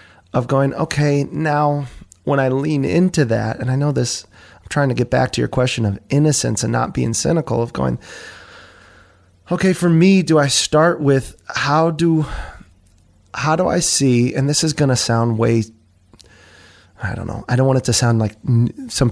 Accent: American